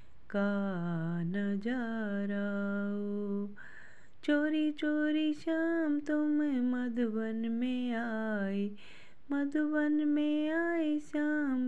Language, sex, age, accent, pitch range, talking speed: Hindi, female, 20-39, native, 200-255 Hz, 70 wpm